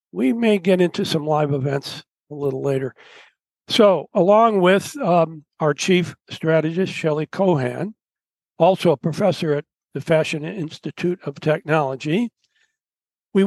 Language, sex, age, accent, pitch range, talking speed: English, male, 60-79, American, 150-185 Hz, 130 wpm